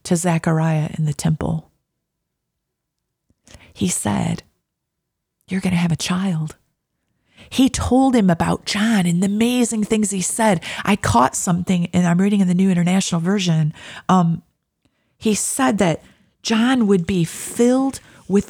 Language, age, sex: English, 40-59, female